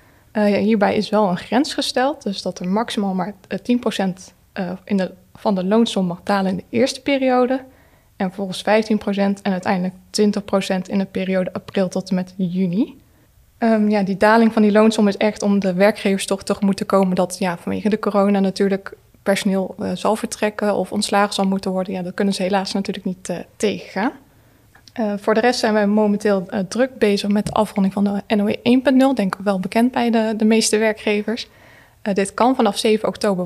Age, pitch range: 20-39, 195-225 Hz